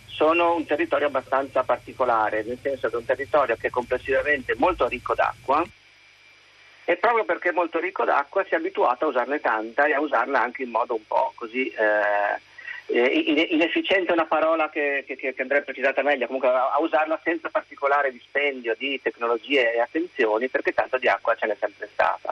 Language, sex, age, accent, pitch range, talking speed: Italian, male, 40-59, native, 125-165 Hz, 185 wpm